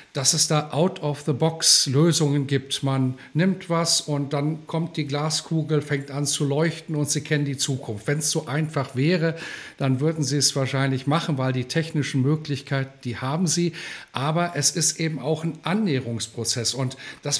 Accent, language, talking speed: German, German, 170 wpm